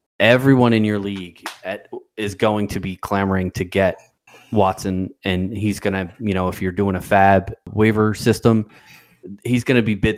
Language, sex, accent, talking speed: English, male, American, 175 wpm